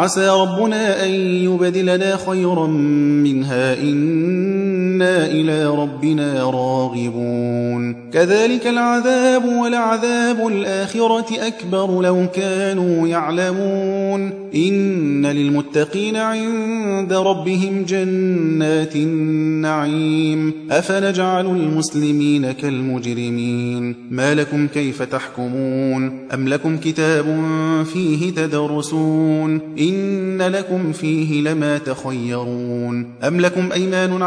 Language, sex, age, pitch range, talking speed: Arabic, male, 30-49, 145-190 Hz, 75 wpm